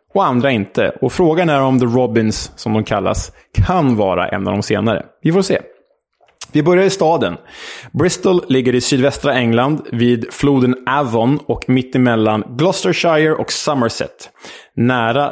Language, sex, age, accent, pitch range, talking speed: Swedish, male, 20-39, Norwegian, 110-145 Hz, 155 wpm